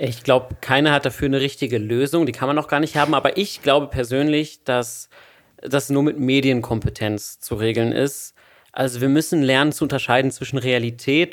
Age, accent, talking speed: 30-49, German, 185 wpm